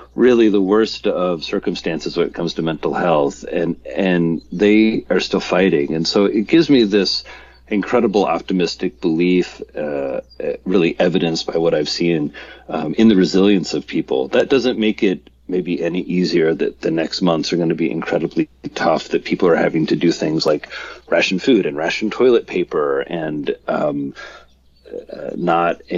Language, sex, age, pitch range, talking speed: English, male, 40-59, 85-105 Hz, 170 wpm